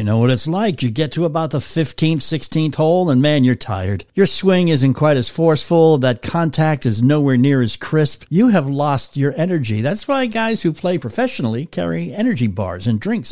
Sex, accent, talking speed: male, American, 205 wpm